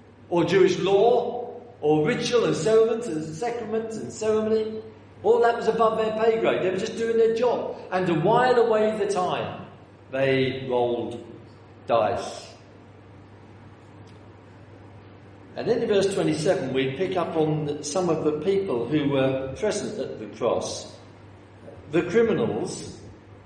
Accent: British